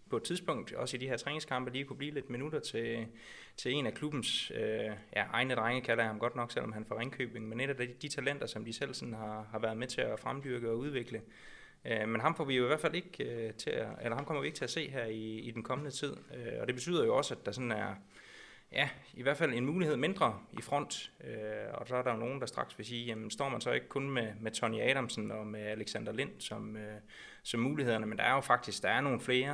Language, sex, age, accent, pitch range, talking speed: Danish, male, 20-39, native, 110-130 Hz, 245 wpm